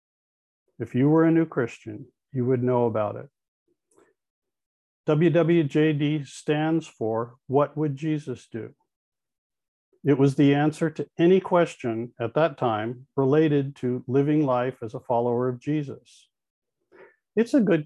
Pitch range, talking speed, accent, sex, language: 125-160 Hz, 135 wpm, American, male, English